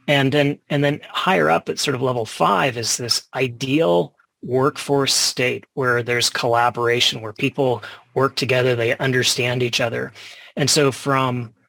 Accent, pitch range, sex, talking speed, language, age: American, 120-145 Hz, male, 150 wpm, English, 30-49